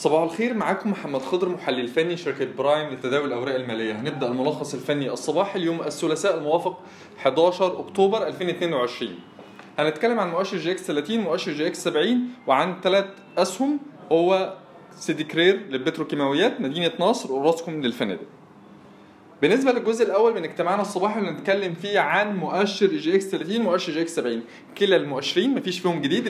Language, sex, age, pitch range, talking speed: Arabic, male, 20-39, 150-195 Hz, 150 wpm